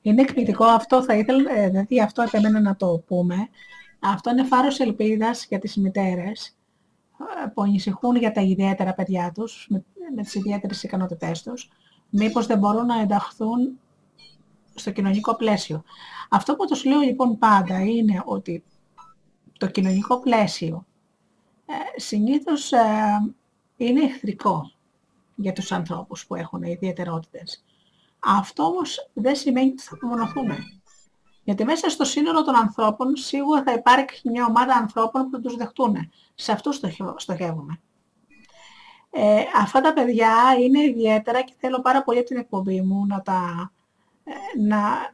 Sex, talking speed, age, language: female, 135 wpm, 30-49, Greek